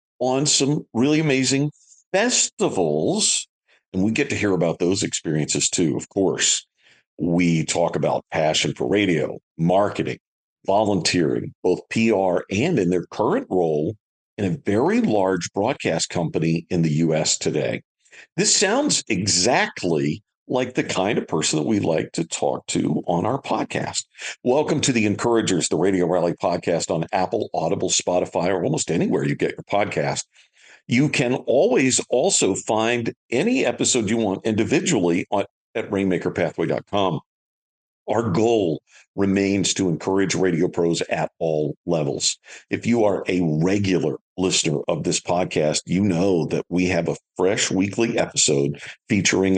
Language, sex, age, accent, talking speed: English, male, 50-69, American, 145 wpm